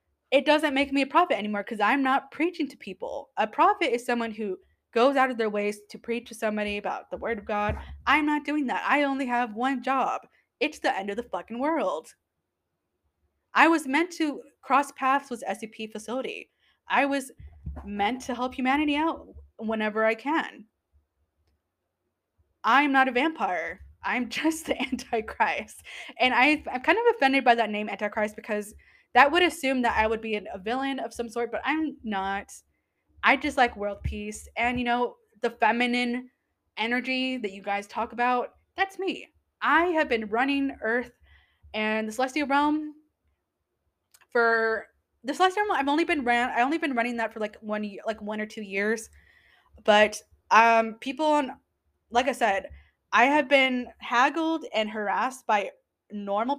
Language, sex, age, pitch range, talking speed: English, female, 20-39, 215-280 Hz, 175 wpm